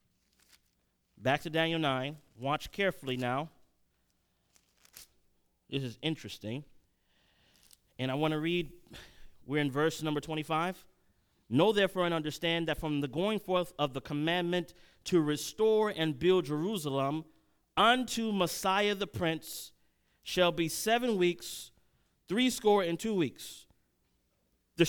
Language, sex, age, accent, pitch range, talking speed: English, male, 30-49, American, 140-190 Hz, 120 wpm